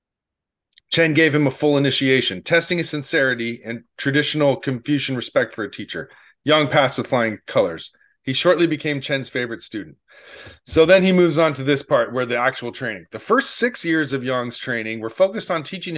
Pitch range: 120-150 Hz